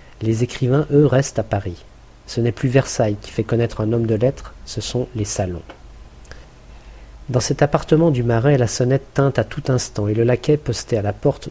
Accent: French